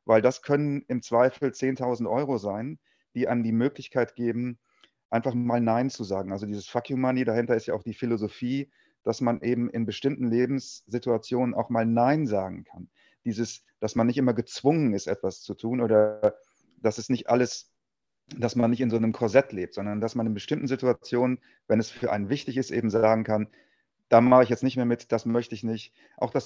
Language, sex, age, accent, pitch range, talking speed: German, male, 30-49, German, 115-125 Hz, 200 wpm